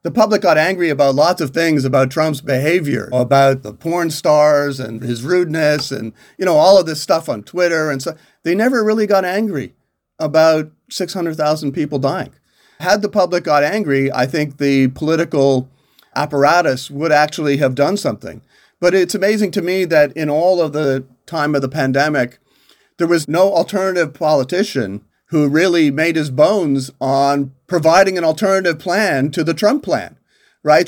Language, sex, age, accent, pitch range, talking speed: English, male, 40-59, American, 140-175 Hz, 170 wpm